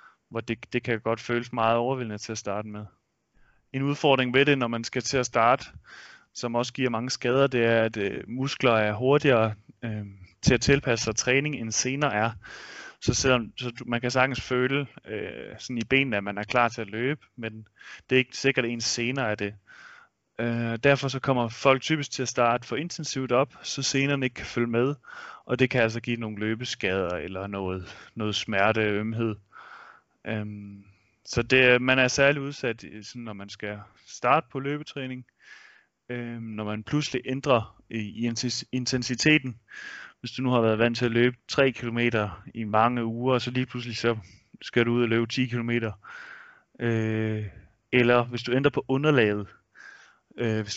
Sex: male